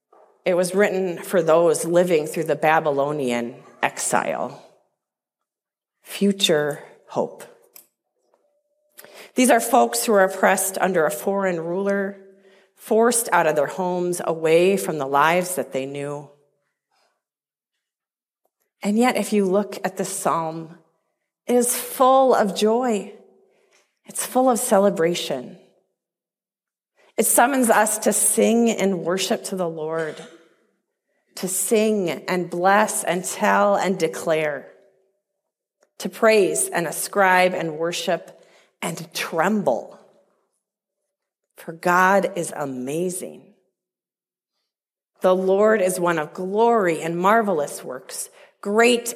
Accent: American